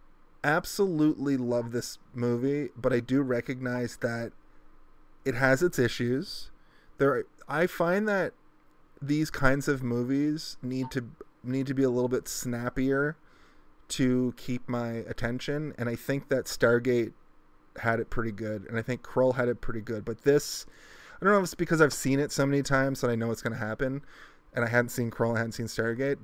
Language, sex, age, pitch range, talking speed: English, male, 30-49, 115-135 Hz, 190 wpm